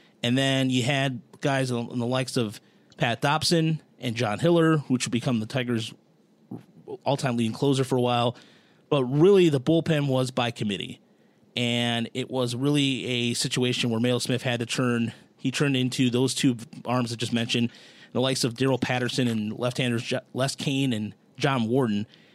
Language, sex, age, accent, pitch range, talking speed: English, male, 30-49, American, 120-145 Hz, 175 wpm